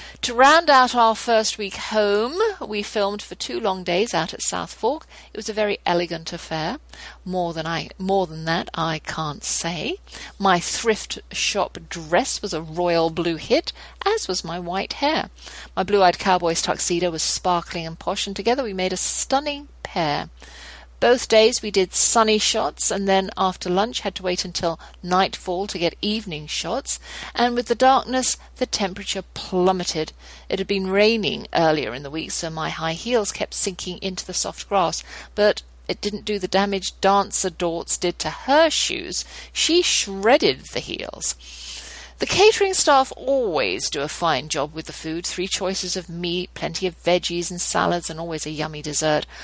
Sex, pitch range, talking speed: female, 170-215 Hz, 175 wpm